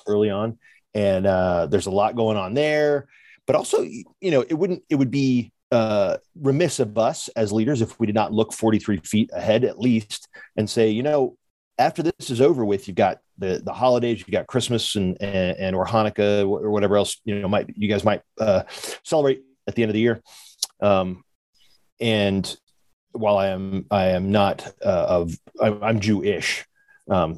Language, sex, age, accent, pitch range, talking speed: English, male, 30-49, American, 105-135 Hz, 195 wpm